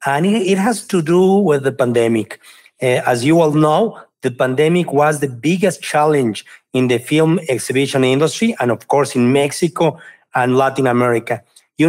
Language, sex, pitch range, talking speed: English, male, 130-170 Hz, 165 wpm